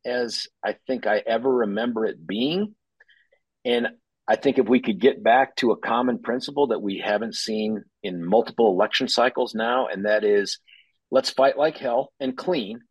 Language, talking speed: English, 175 wpm